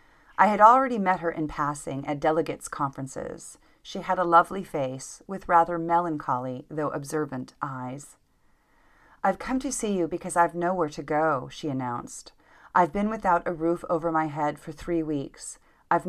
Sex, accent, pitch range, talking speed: female, American, 150-185 Hz, 170 wpm